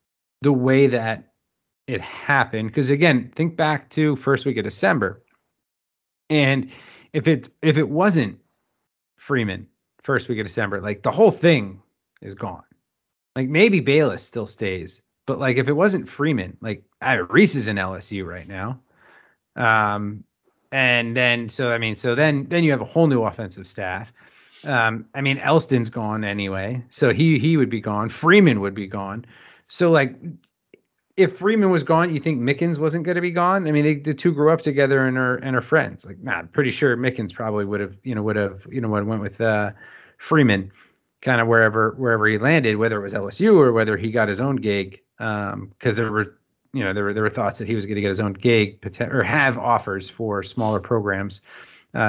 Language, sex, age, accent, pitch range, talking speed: English, male, 30-49, American, 105-145 Hz, 200 wpm